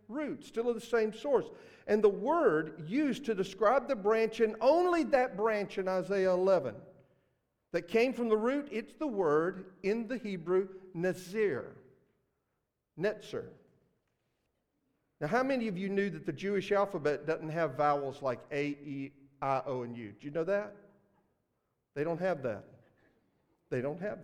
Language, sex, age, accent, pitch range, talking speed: English, male, 50-69, American, 185-245 Hz, 160 wpm